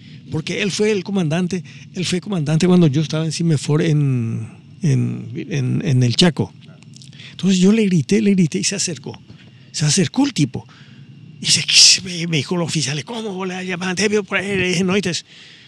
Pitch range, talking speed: 135-175 Hz, 165 wpm